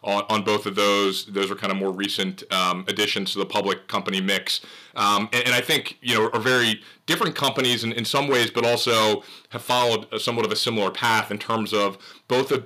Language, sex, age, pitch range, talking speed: English, male, 30-49, 100-115 Hz, 230 wpm